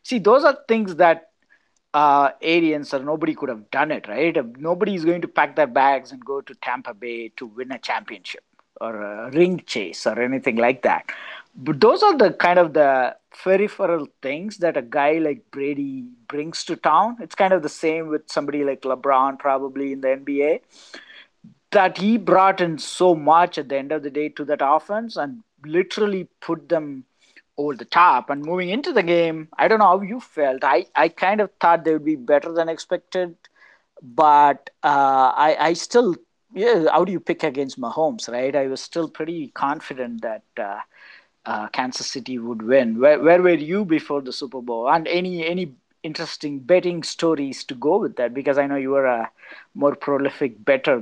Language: English